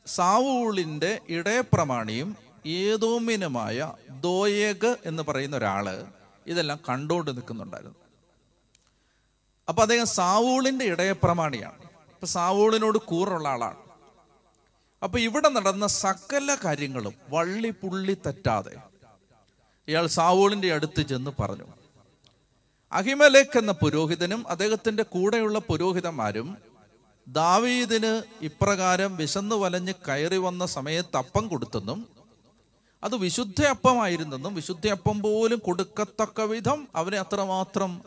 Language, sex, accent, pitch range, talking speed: Malayalam, male, native, 150-205 Hz, 80 wpm